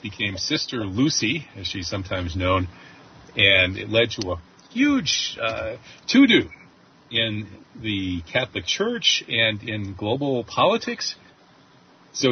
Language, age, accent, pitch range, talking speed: English, 40-59, American, 95-125 Hz, 115 wpm